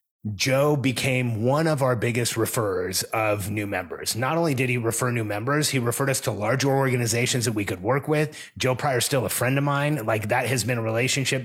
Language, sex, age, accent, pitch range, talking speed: English, male, 30-49, American, 110-135 Hz, 220 wpm